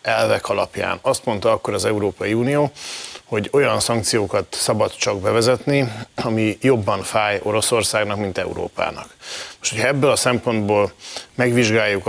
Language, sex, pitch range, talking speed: Hungarian, male, 105-125 Hz, 130 wpm